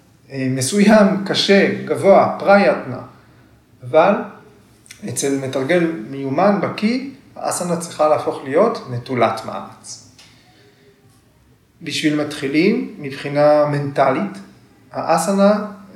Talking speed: 75 wpm